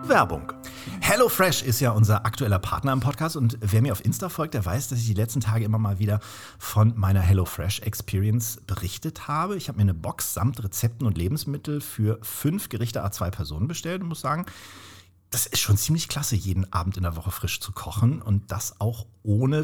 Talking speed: 195 wpm